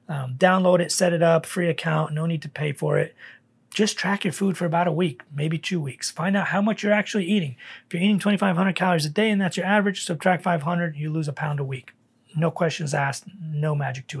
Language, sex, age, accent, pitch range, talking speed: English, male, 30-49, American, 145-180 Hz, 240 wpm